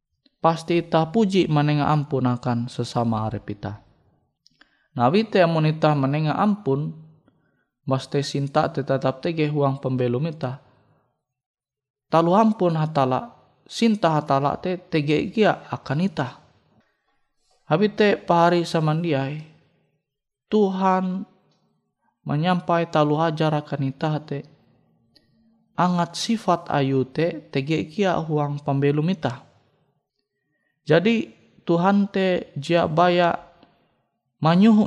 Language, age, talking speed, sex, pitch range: Indonesian, 20-39, 90 wpm, male, 140-180 Hz